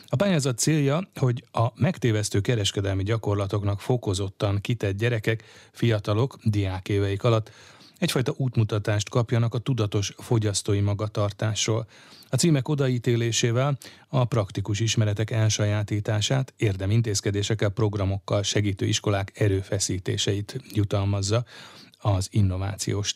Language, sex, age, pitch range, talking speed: Hungarian, male, 30-49, 105-125 Hz, 95 wpm